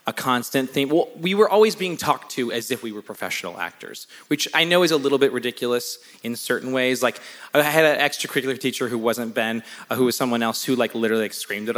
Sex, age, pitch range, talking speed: male, 20-39, 115-155 Hz, 235 wpm